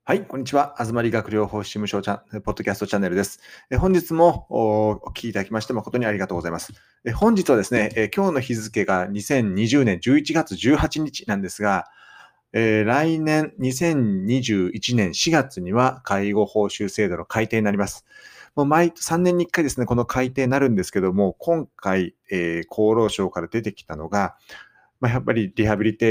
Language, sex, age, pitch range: Japanese, male, 40-59, 105-135 Hz